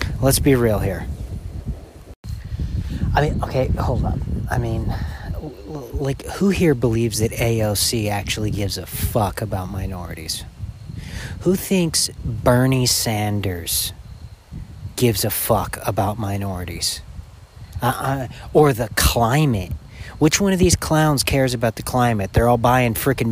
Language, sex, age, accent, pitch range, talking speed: English, male, 40-59, American, 95-125 Hz, 130 wpm